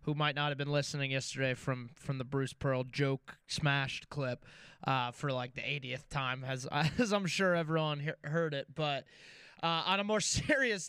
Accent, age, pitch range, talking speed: American, 20-39, 140-180 Hz, 195 wpm